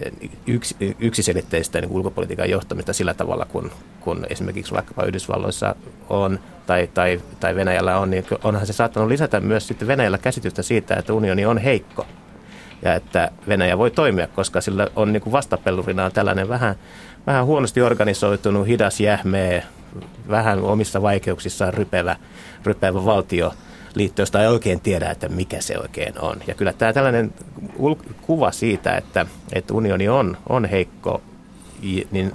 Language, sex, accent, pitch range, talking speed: Finnish, male, native, 95-110 Hz, 135 wpm